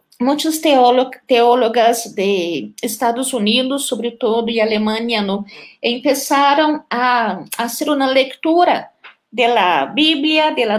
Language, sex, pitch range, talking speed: Spanish, female, 220-280 Hz, 105 wpm